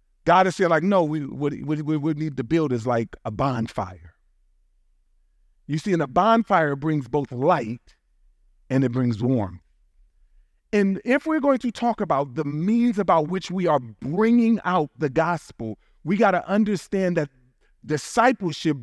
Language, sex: English, male